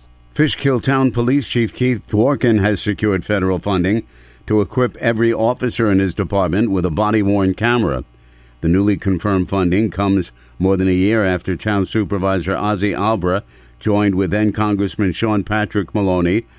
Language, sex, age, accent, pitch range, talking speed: English, male, 60-79, American, 85-105 Hz, 150 wpm